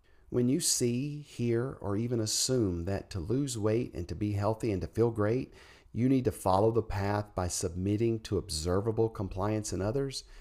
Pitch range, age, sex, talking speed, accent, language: 95-125 Hz, 40-59, male, 185 wpm, American, English